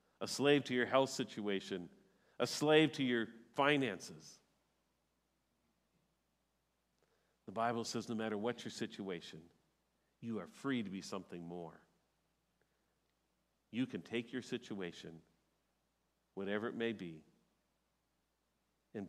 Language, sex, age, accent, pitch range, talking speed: English, male, 50-69, American, 105-150 Hz, 115 wpm